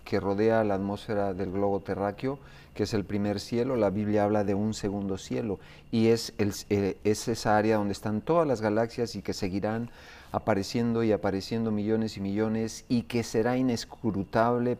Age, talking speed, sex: 40-59, 170 wpm, male